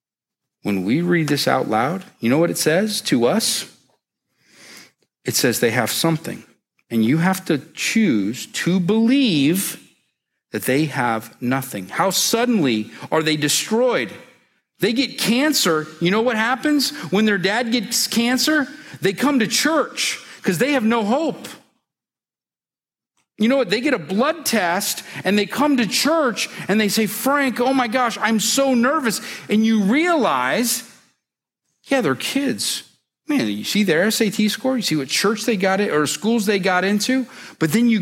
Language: English